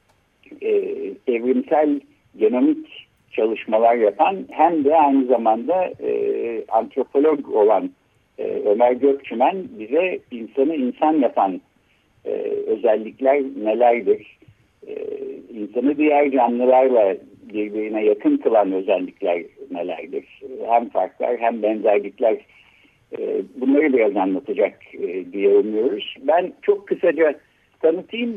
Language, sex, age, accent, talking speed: Turkish, male, 60-79, native, 95 wpm